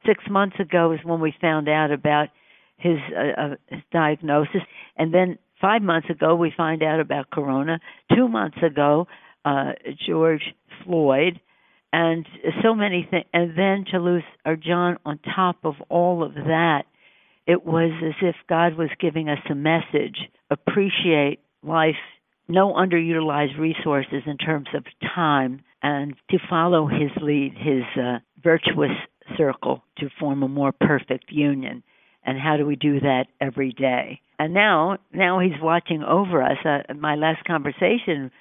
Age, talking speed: 60-79, 155 wpm